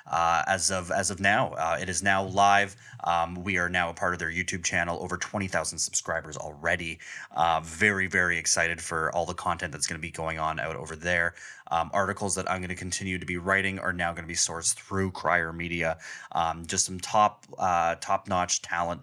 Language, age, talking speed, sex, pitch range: English, 20-39, 220 wpm, male, 85-105 Hz